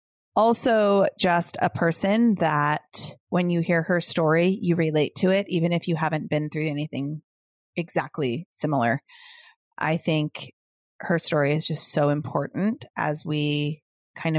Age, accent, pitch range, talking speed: 30-49, American, 155-195 Hz, 140 wpm